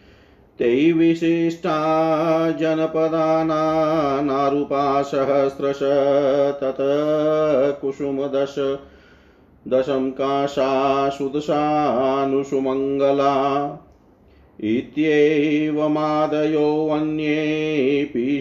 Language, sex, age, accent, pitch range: Hindi, male, 50-69, native, 135-150 Hz